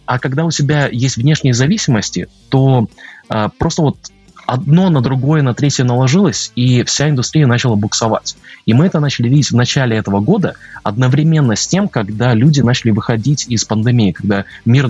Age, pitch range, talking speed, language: 20-39, 105-145 Hz, 165 wpm, Russian